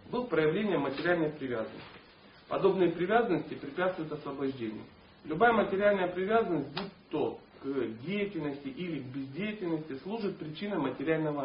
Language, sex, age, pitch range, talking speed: Russian, male, 40-59, 135-195 Hz, 110 wpm